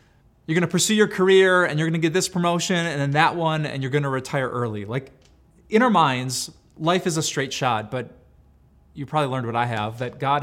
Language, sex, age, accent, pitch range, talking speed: English, male, 20-39, American, 115-155 Hz, 235 wpm